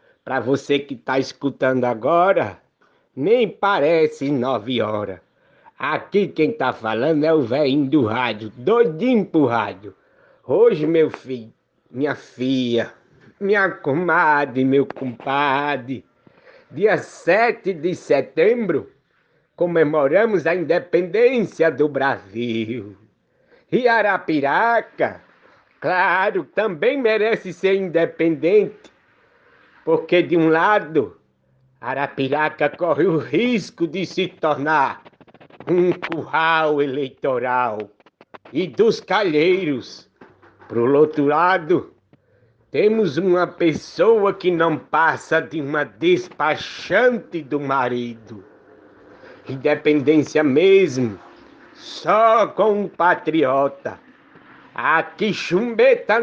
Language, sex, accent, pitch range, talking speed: Portuguese, male, Brazilian, 135-215 Hz, 90 wpm